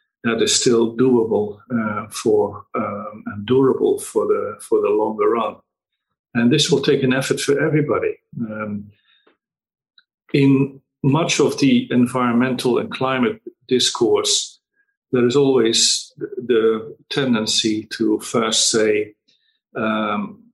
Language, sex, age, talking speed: Indonesian, male, 50-69, 120 wpm